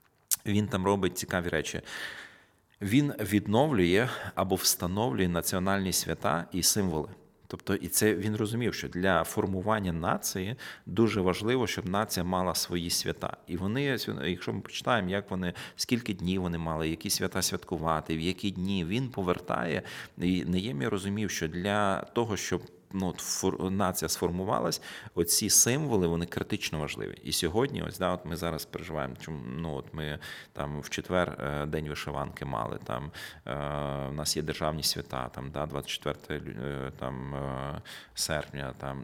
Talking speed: 145 wpm